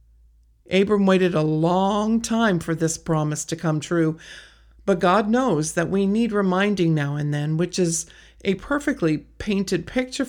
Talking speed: 155 wpm